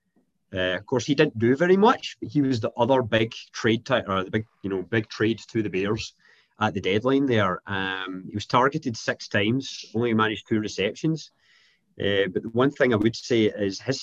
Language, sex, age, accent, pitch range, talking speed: English, male, 30-49, British, 95-115 Hz, 215 wpm